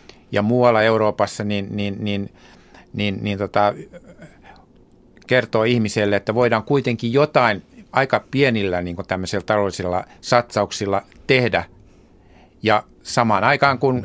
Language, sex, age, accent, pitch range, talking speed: Finnish, male, 60-79, native, 100-120 Hz, 105 wpm